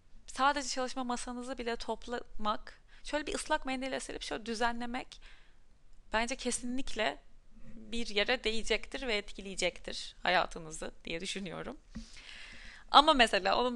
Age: 30-49